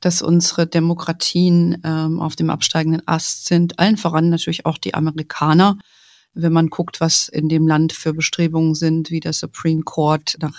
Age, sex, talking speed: 40-59, female, 170 wpm